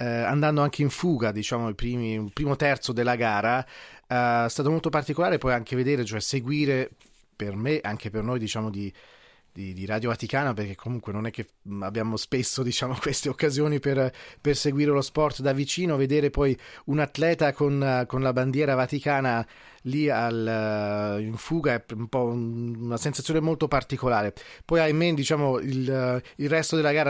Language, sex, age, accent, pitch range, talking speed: Italian, male, 30-49, native, 110-140 Hz, 175 wpm